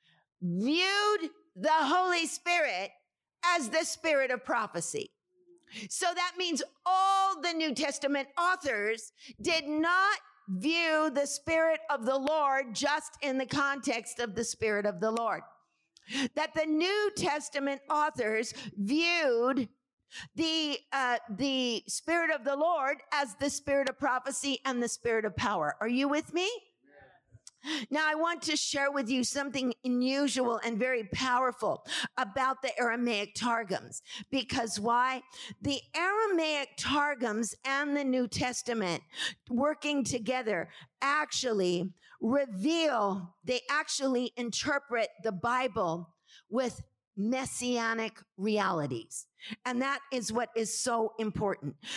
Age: 50-69